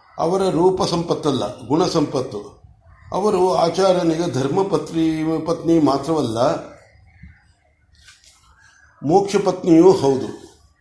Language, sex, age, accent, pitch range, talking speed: Kannada, male, 50-69, native, 145-180 Hz, 60 wpm